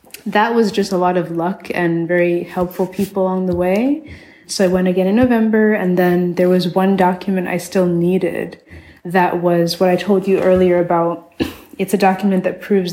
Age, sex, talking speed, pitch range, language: 20-39, female, 195 wpm, 175-205 Hz, English